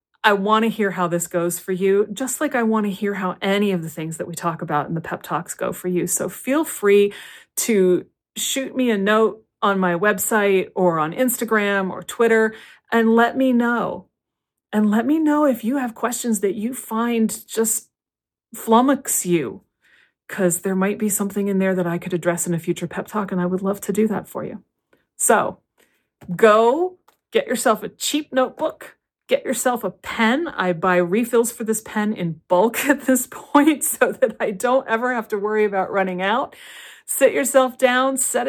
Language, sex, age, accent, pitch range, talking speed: English, female, 30-49, American, 185-235 Hz, 200 wpm